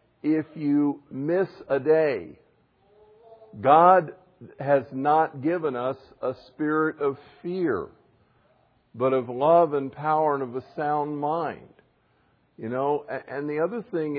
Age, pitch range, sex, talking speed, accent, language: 50-69, 125-155 Hz, male, 125 wpm, American, English